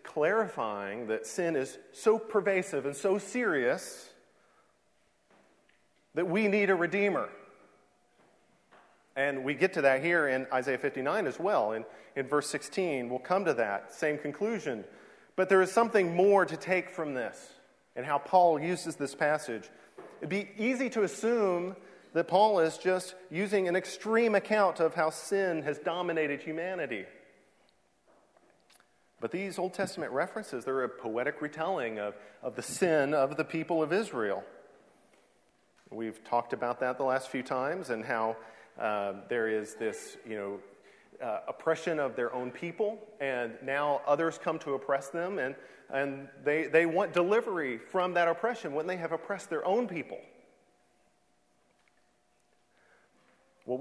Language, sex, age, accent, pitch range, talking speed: English, male, 40-59, American, 130-190 Hz, 145 wpm